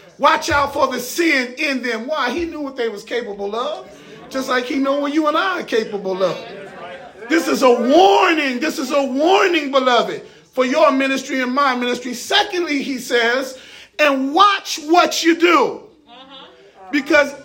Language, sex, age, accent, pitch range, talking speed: English, male, 30-49, American, 245-310 Hz, 170 wpm